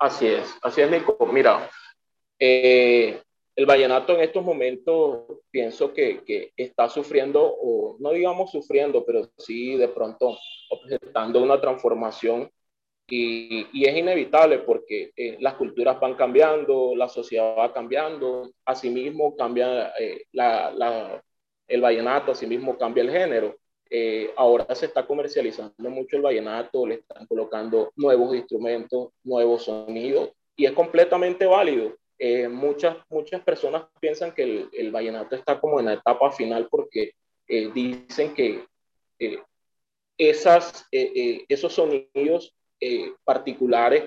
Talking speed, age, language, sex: 135 wpm, 30-49, Spanish, male